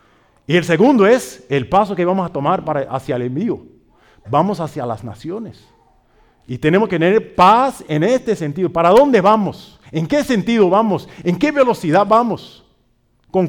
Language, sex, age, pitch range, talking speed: English, male, 50-69, 120-180 Hz, 165 wpm